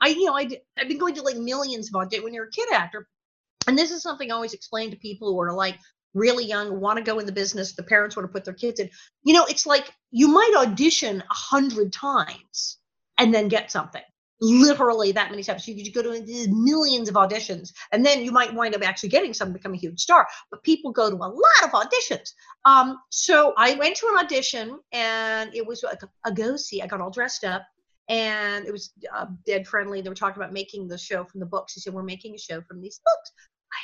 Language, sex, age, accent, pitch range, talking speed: English, female, 40-59, American, 195-270 Hz, 245 wpm